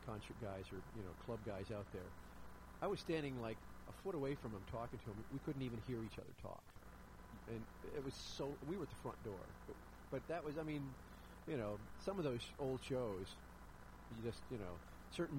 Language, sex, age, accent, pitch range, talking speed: English, male, 40-59, American, 105-135 Hz, 215 wpm